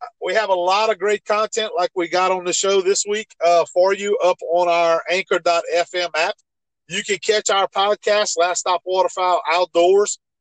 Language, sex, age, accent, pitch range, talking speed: English, male, 50-69, American, 175-230 Hz, 185 wpm